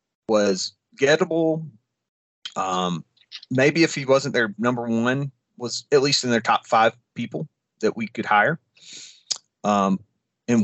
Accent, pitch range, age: American, 110-135 Hz, 30-49